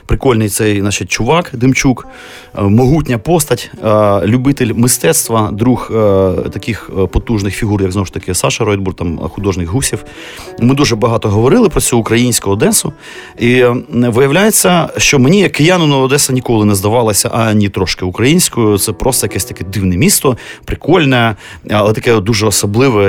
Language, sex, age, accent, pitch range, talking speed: Ukrainian, male, 30-49, native, 100-130 Hz, 145 wpm